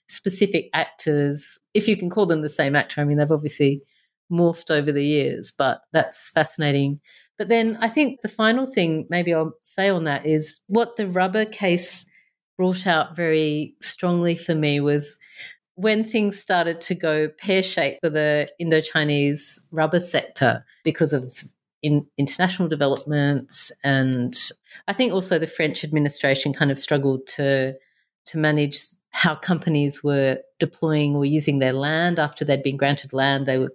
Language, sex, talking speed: English, female, 160 wpm